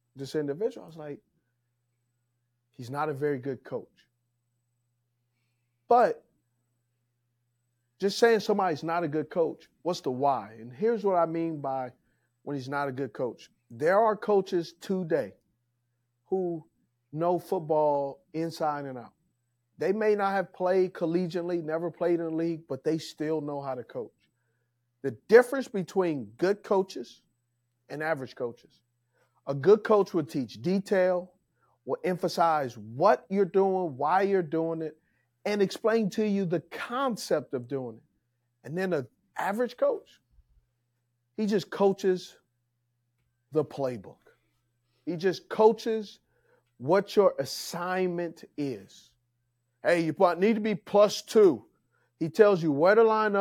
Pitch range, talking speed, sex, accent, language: 120-190 Hz, 140 wpm, male, American, English